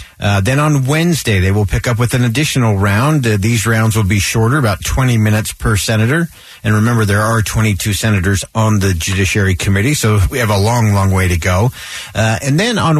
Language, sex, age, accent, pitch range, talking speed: English, male, 50-69, American, 95-120 Hz, 210 wpm